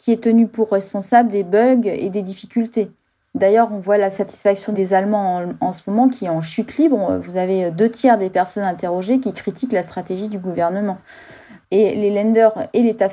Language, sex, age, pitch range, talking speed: French, female, 30-49, 185-225 Hz, 200 wpm